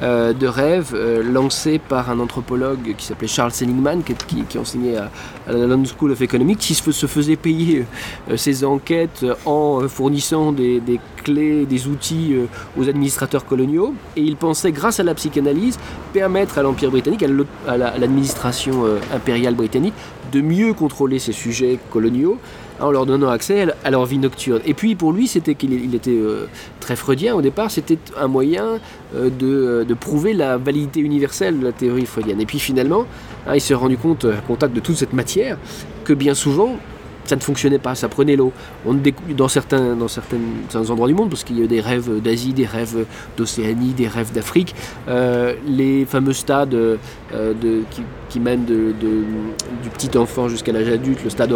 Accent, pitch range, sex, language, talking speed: French, 120-145 Hz, male, English, 190 wpm